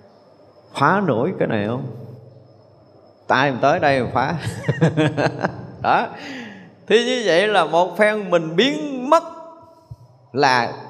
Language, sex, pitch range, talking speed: Vietnamese, male, 130-215 Hz, 120 wpm